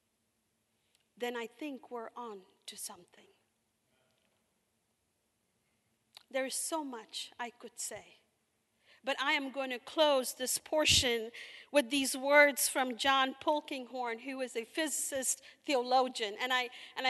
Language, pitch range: English, 240-290 Hz